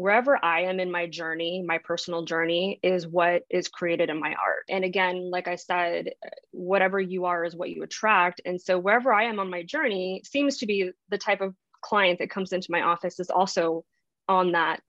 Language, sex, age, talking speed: English, female, 20-39, 210 wpm